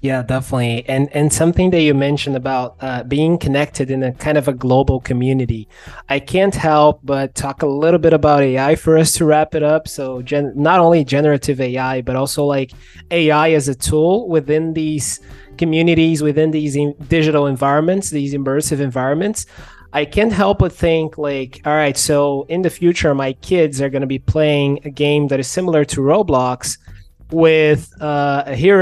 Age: 20-39